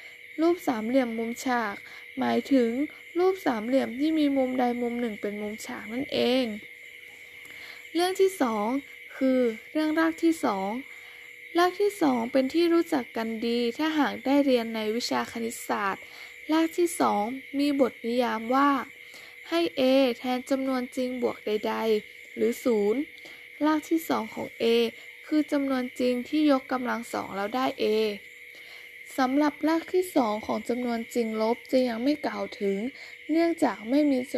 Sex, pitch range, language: female, 235-310 Hz, Thai